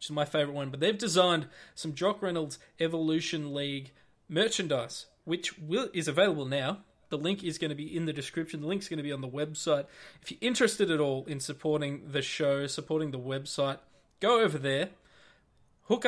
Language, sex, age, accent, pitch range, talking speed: English, male, 20-39, Australian, 140-175 Hz, 195 wpm